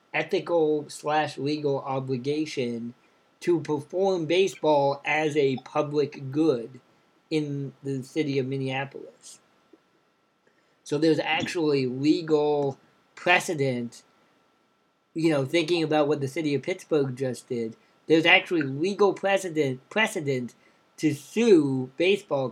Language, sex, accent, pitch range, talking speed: English, male, American, 140-175 Hz, 100 wpm